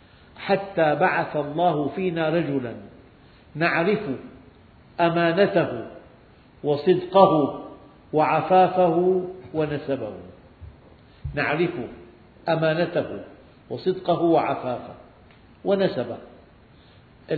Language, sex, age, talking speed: Arabic, male, 50-69, 50 wpm